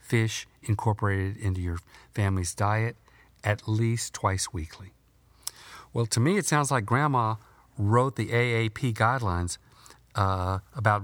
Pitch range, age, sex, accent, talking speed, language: 100-130 Hz, 50-69, male, American, 125 wpm, English